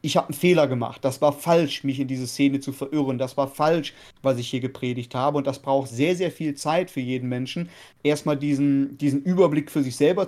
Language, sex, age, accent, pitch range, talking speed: German, male, 30-49, German, 140-155 Hz, 230 wpm